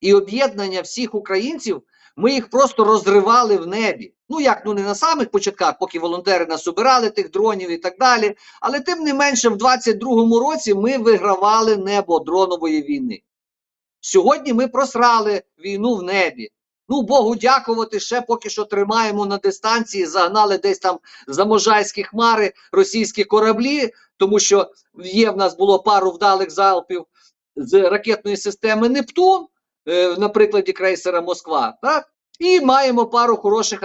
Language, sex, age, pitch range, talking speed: Ukrainian, male, 50-69, 185-245 Hz, 145 wpm